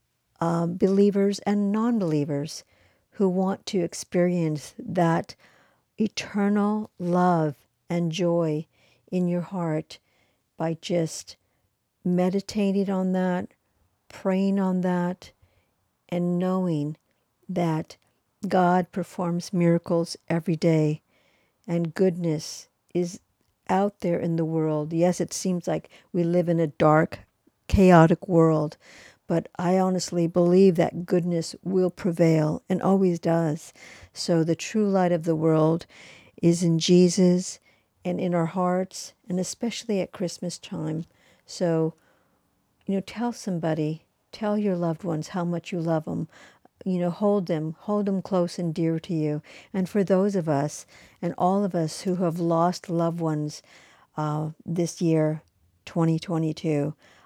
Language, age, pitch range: English, 60-79, 160-185 Hz